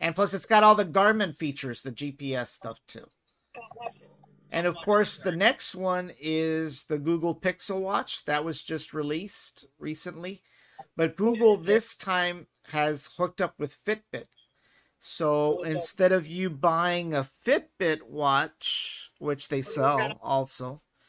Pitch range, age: 135-175 Hz, 50-69